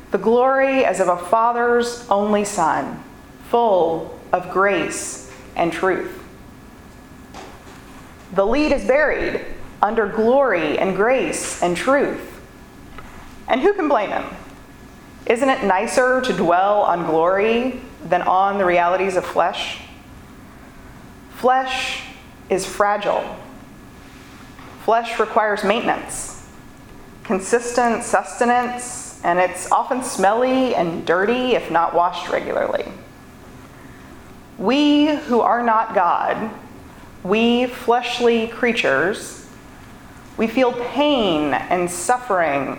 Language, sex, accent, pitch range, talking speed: English, female, American, 185-250 Hz, 100 wpm